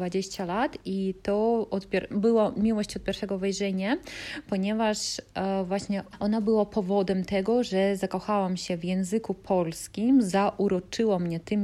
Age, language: 20-39, Polish